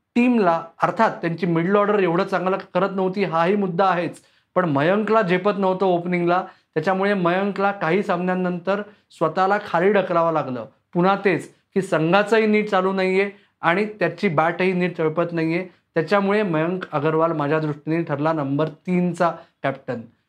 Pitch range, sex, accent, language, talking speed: 160-195 Hz, male, native, Marathi, 140 wpm